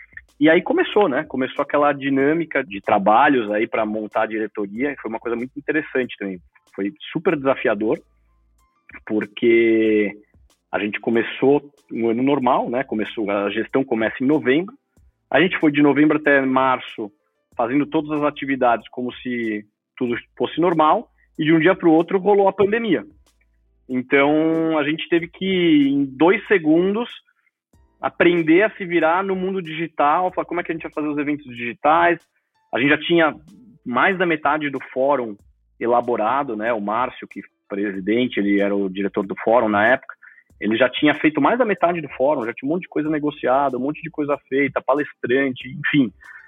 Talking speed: 180 wpm